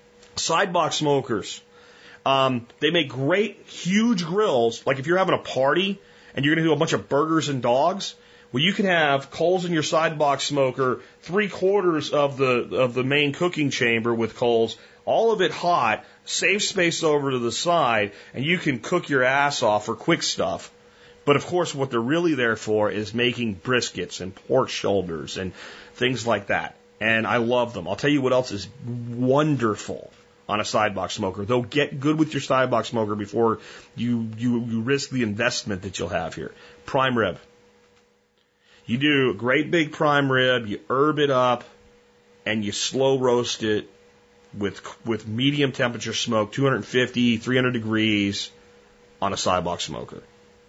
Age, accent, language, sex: 30-49, American, English, male